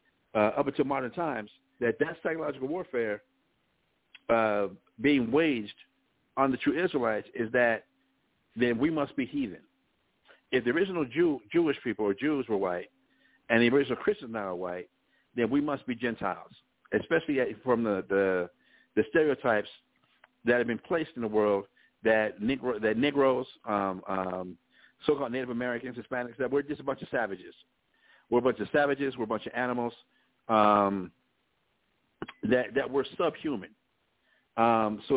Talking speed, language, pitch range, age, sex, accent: 155 wpm, English, 105-140 Hz, 60-79, male, American